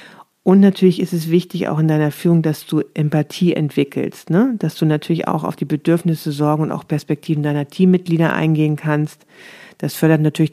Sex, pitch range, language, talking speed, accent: female, 150-170 Hz, German, 180 wpm, German